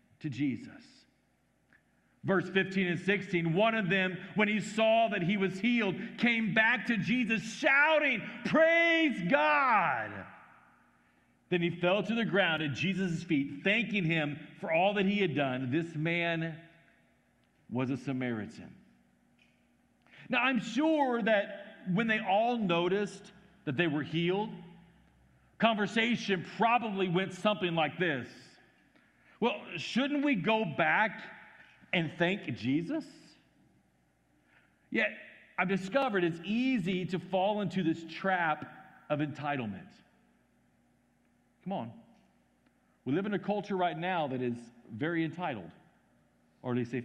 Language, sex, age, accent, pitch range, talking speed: English, male, 50-69, American, 155-220 Hz, 130 wpm